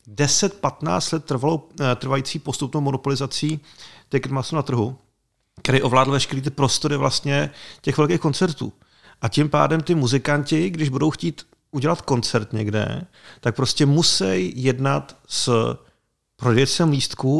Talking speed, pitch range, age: 125 wpm, 120-145 Hz, 40-59